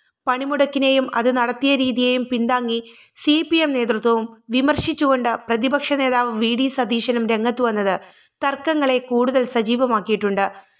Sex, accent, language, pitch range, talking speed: female, native, Malayalam, 230-275 Hz, 90 wpm